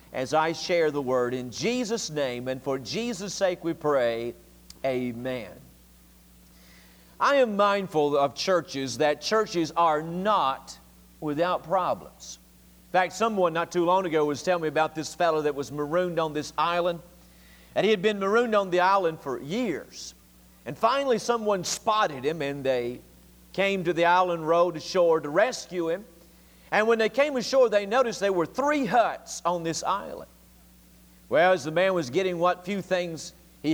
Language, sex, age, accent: English, male, 50-69, American